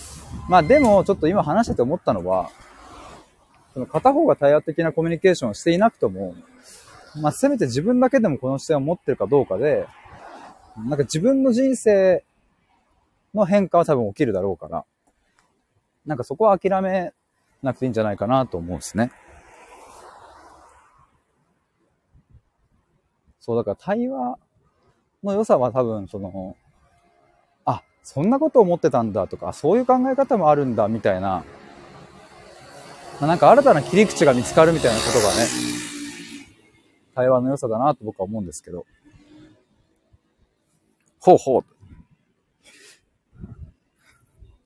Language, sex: Japanese, male